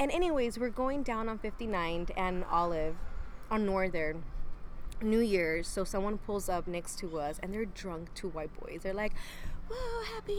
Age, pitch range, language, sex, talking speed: 20-39, 170-220 Hz, English, female, 175 wpm